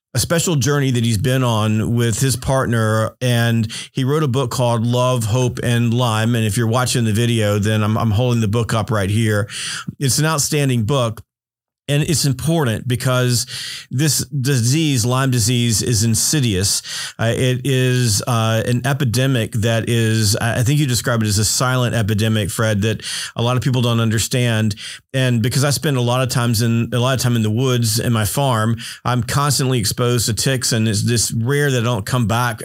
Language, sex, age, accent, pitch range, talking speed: English, male, 40-59, American, 115-140 Hz, 195 wpm